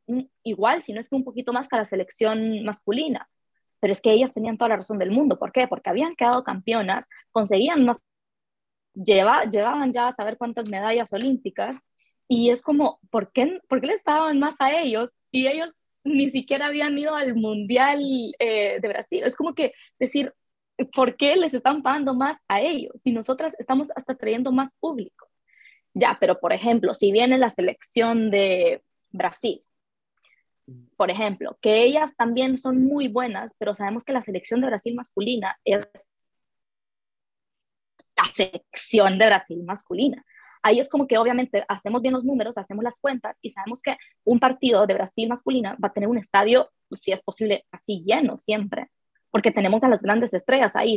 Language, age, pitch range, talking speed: English, 20-39, 210-265 Hz, 180 wpm